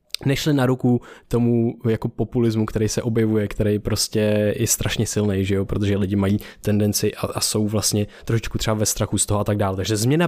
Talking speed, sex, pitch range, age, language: 195 wpm, male, 110-135 Hz, 20-39, Czech